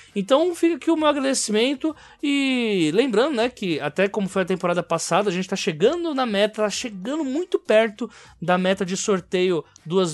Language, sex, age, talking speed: Portuguese, male, 20-39, 185 wpm